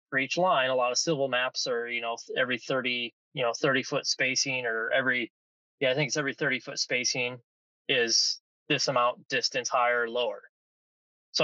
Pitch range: 120-140 Hz